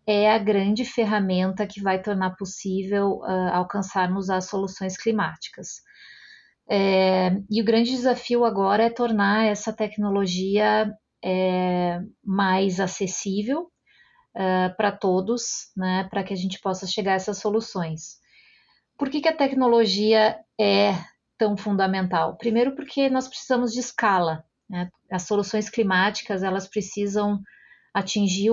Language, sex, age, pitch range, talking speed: Portuguese, female, 30-49, 185-220 Hz, 120 wpm